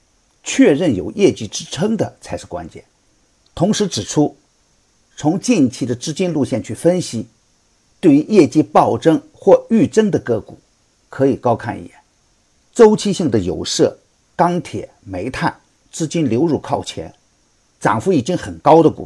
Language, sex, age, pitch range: Chinese, male, 50-69, 115-180 Hz